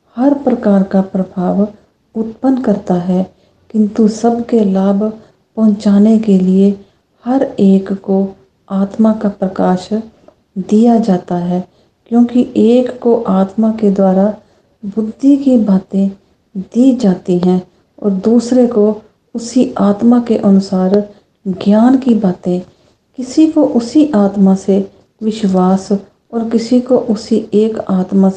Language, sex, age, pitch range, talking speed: English, female, 40-59, 195-230 Hz, 120 wpm